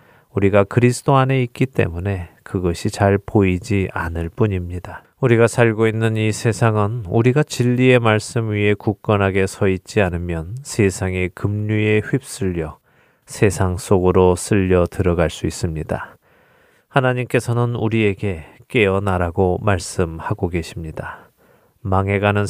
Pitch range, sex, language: 95-115 Hz, male, Korean